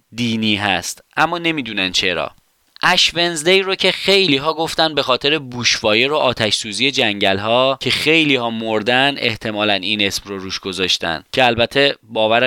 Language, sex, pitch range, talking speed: Persian, male, 120-160 Hz, 155 wpm